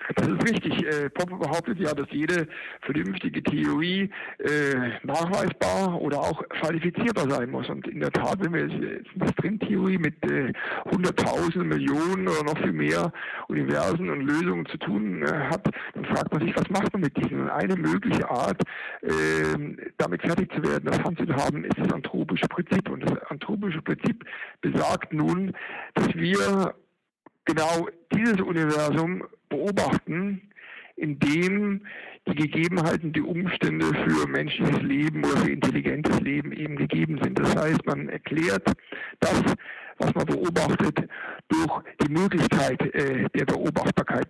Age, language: 60-79, German